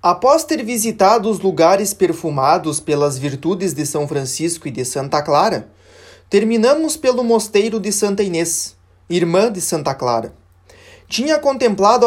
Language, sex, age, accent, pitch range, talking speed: Portuguese, male, 20-39, Brazilian, 160-235 Hz, 135 wpm